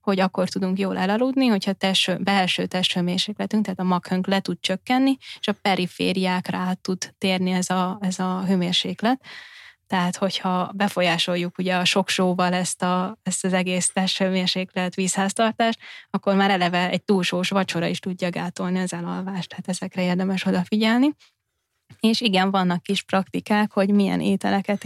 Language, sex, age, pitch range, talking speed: Hungarian, female, 10-29, 185-200 Hz, 145 wpm